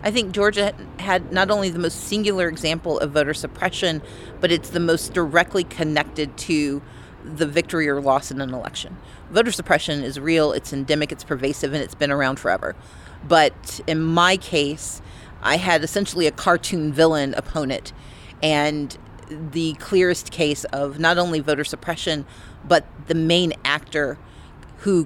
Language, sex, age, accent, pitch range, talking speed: English, female, 40-59, American, 145-175 Hz, 155 wpm